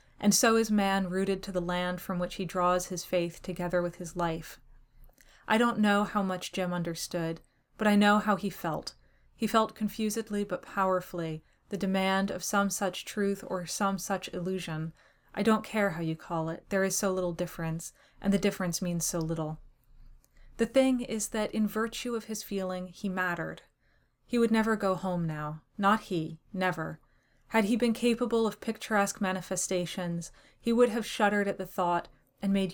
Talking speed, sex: 185 wpm, female